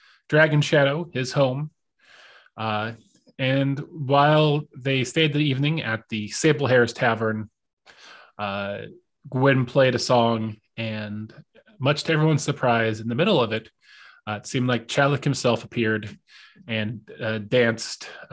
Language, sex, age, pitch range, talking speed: English, male, 30-49, 110-145 Hz, 135 wpm